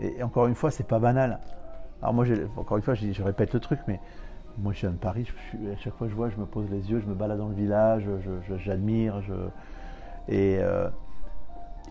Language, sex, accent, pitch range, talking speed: French, male, French, 100-120 Hz, 225 wpm